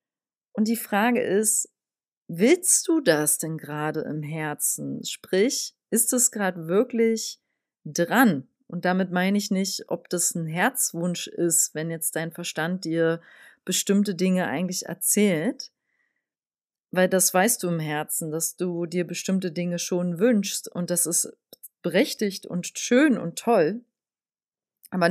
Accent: German